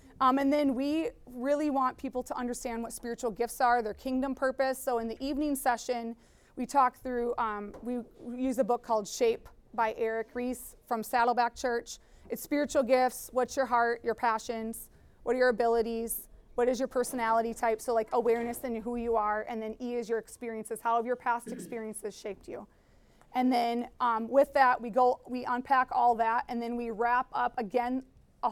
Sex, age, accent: female, 30-49, American